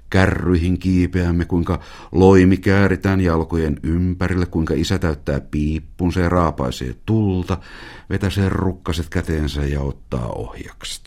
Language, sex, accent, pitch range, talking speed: Finnish, male, native, 70-90 Hz, 110 wpm